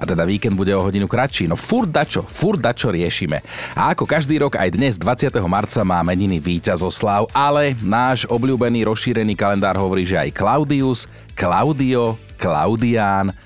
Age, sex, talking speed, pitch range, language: 30-49, male, 160 wpm, 95-125 Hz, Slovak